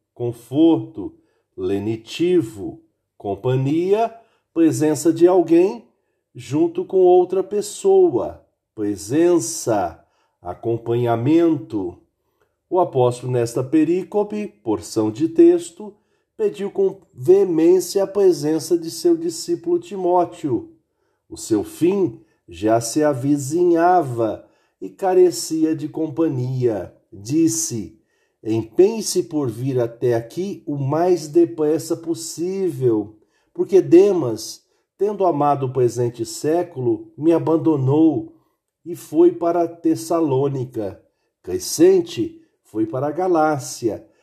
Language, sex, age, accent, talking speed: Portuguese, male, 50-69, Brazilian, 90 wpm